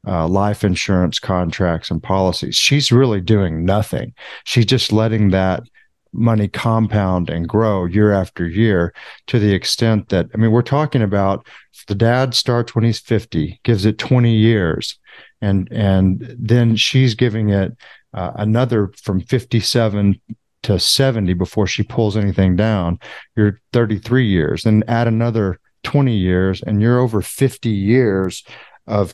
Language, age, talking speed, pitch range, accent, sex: English, 40-59, 145 wpm, 95-115 Hz, American, male